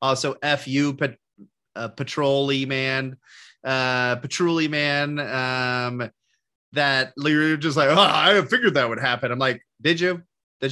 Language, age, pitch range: English, 30-49, 125-155 Hz